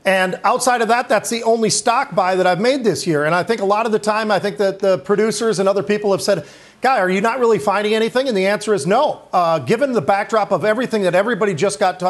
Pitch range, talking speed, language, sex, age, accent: 190-225 Hz, 270 wpm, English, male, 40-59, American